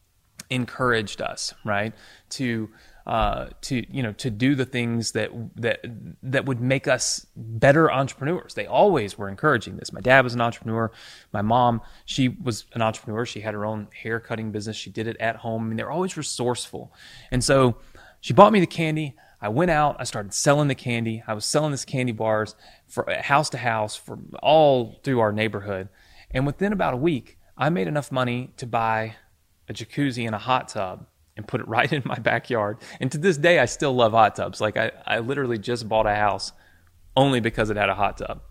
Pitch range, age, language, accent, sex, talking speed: 110-140 Hz, 30-49, English, American, male, 205 wpm